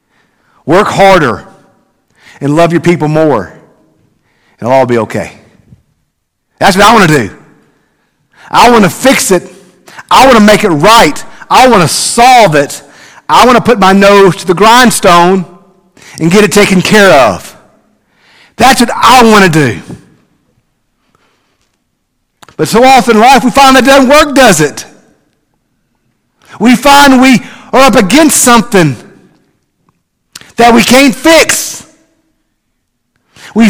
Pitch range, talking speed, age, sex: 185-270 Hz, 140 wpm, 50-69, male